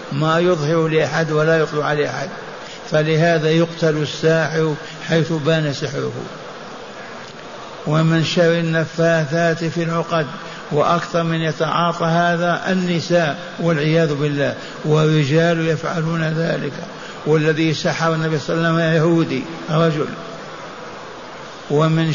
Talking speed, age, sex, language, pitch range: 105 wpm, 60-79, male, Arabic, 155-170 Hz